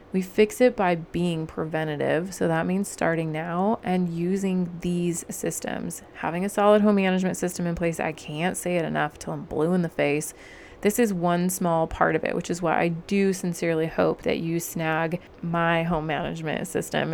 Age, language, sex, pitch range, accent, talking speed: 30-49, English, female, 165-185 Hz, American, 195 wpm